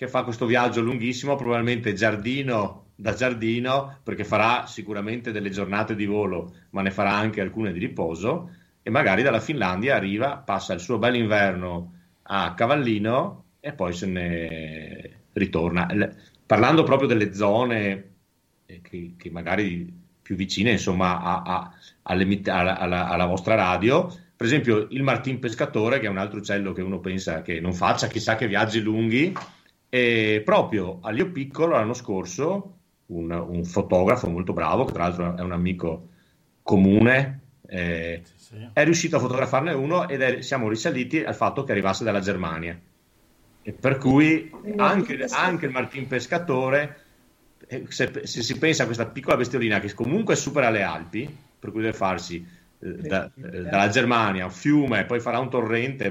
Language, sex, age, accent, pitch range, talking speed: Italian, male, 40-59, native, 95-125 Hz, 160 wpm